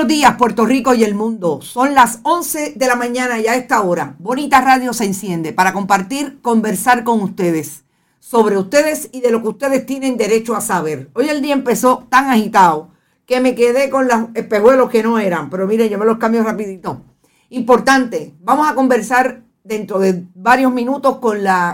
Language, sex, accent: Spanish, female, American